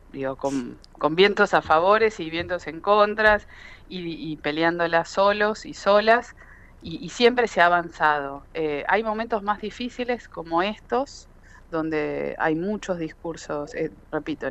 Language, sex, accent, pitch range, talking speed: Spanish, female, Argentinian, 150-200 Hz, 145 wpm